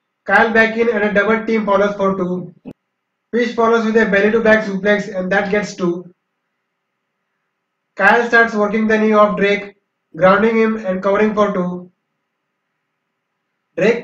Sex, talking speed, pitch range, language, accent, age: male, 155 wpm, 195-220 Hz, English, Indian, 20-39